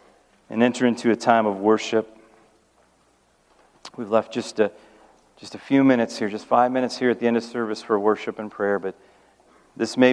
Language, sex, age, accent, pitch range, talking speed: English, male, 40-59, American, 105-125 Hz, 190 wpm